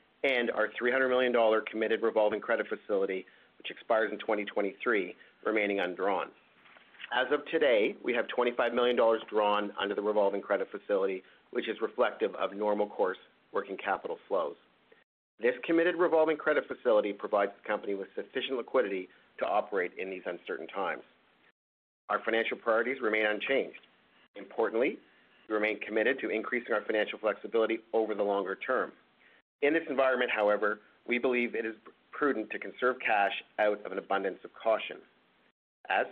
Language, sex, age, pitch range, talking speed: English, male, 40-59, 105-120 Hz, 150 wpm